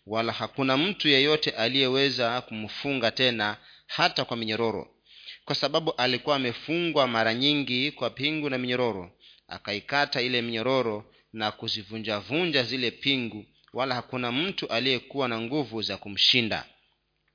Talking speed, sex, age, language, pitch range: 125 wpm, male, 40-59, Swahili, 115-145 Hz